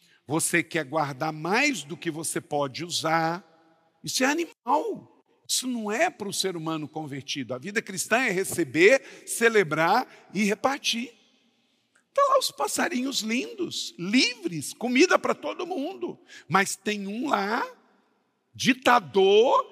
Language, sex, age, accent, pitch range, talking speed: Portuguese, male, 50-69, Brazilian, 165-255 Hz, 130 wpm